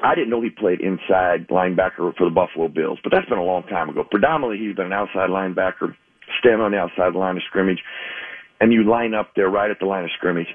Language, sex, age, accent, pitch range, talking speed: English, male, 50-69, American, 90-105 Hz, 240 wpm